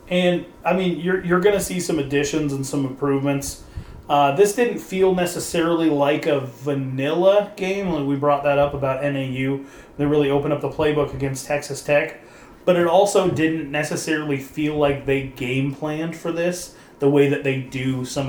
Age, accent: 30-49, American